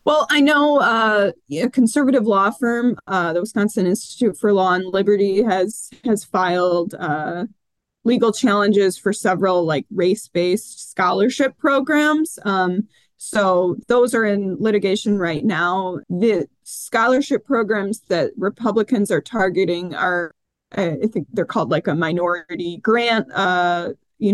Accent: American